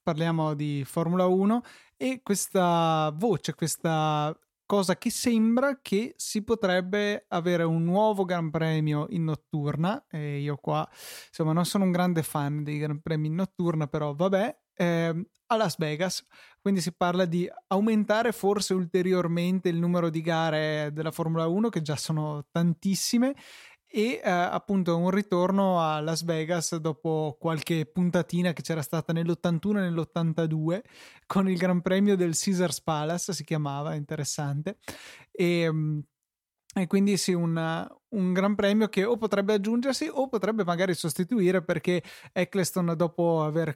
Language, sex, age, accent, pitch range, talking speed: Italian, male, 20-39, native, 155-185 Hz, 145 wpm